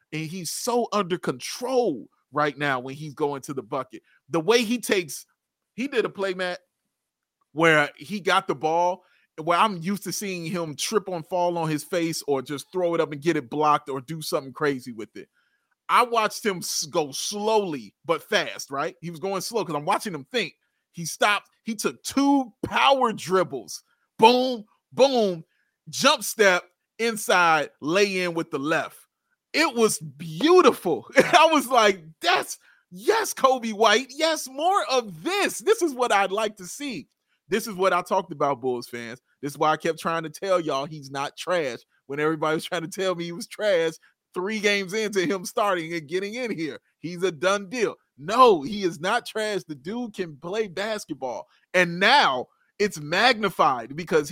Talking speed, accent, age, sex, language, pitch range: 185 wpm, American, 30-49, male, English, 160-225 Hz